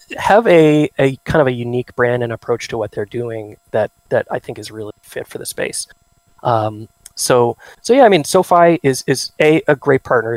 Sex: male